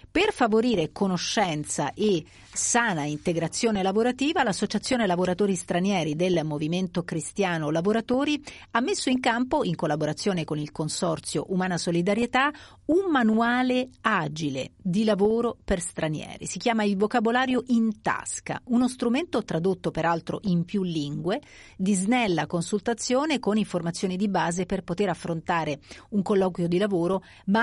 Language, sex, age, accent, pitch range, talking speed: Italian, female, 40-59, native, 170-225 Hz, 130 wpm